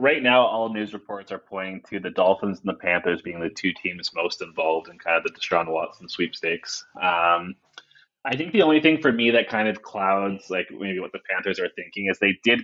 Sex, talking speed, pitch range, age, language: male, 230 wpm, 90-115 Hz, 20-39, English